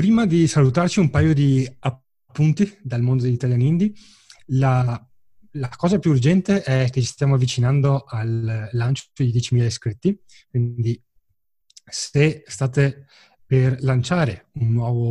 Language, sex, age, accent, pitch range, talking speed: Italian, male, 30-49, native, 120-145 Hz, 130 wpm